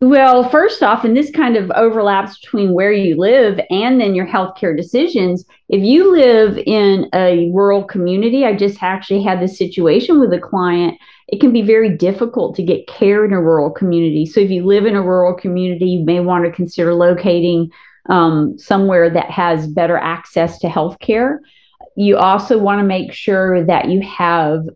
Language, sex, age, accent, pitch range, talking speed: English, female, 40-59, American, 175-220 Hz, 190 wpm